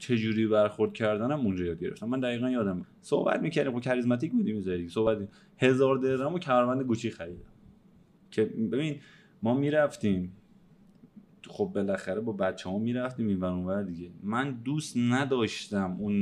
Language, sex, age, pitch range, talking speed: Persian, male, 30-49, 100-140 Hz, 135 wpm